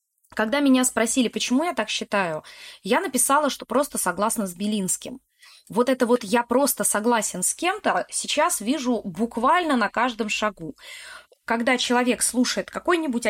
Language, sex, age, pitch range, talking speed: Russian, female, 20-39, 215-275 Hz, 145 wpm